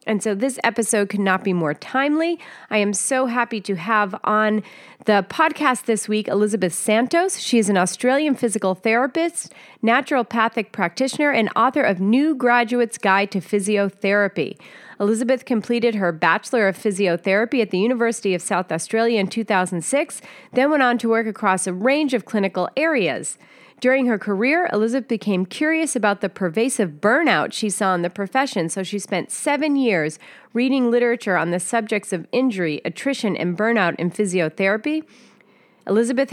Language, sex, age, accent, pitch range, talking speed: English, female, 30-49, American, 195-250 Hz, 160 wpm